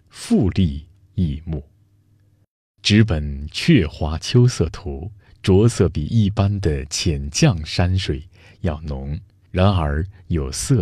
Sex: male